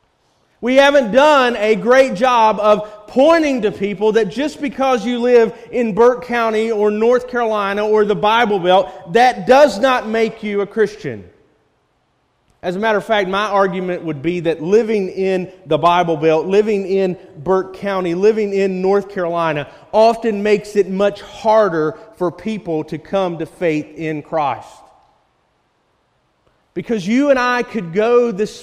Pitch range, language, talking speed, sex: 170-220 Hz, English, 155 wpm, male